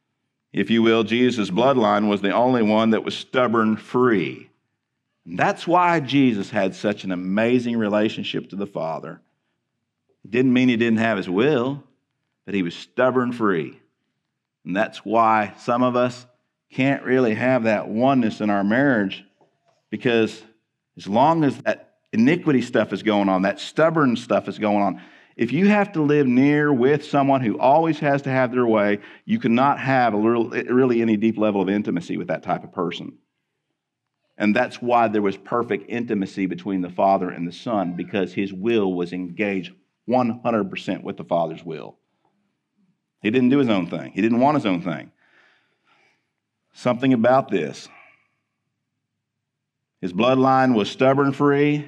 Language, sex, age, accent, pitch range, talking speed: English, male, 50-69, American, 105-135 Hz, 160 wpm